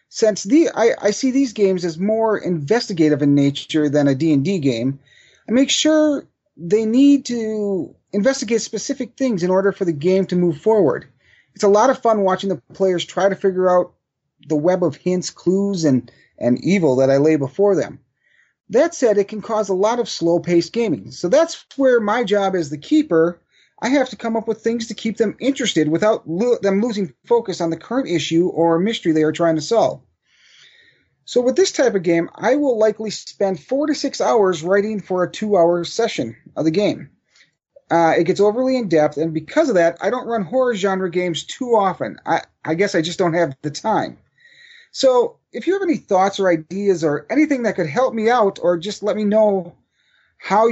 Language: English